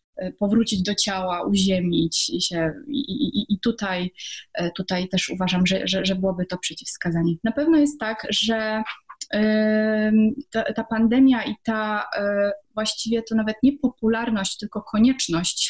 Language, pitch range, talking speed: Polish, 190-225 Hz, 120 wpm